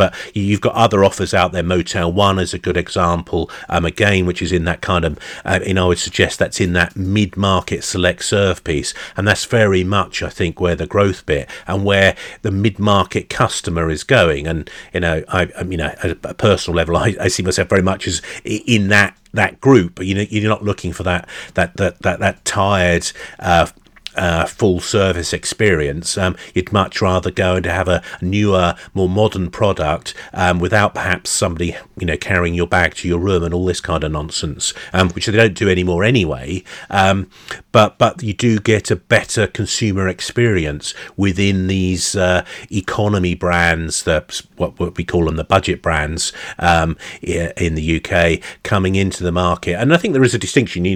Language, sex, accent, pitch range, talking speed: English, male, British, 85-100 Hz, 200 wpm